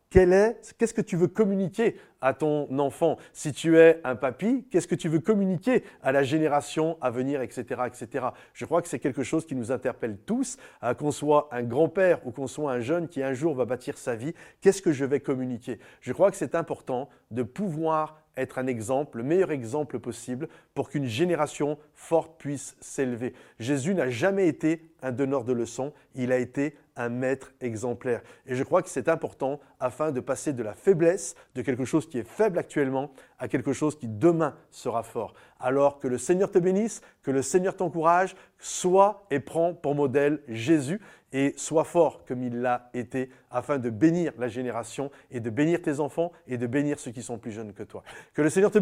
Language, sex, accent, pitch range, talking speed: French, male, French, 125-165 Hz, 205 wpm